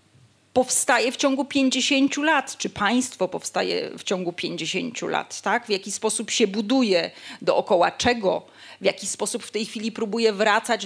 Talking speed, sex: 150 wpm, female